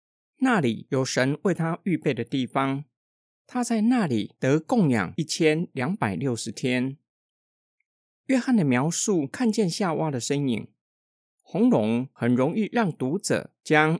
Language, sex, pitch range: Chinese, male, 120-200 Hz